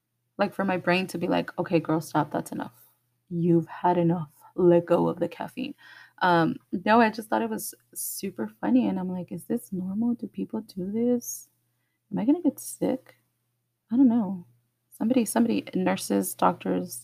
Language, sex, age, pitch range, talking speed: English, female, 20-39, 155-215 Hz, 185 wpm